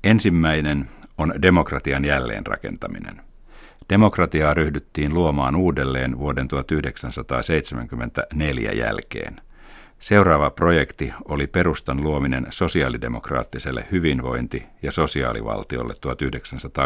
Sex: male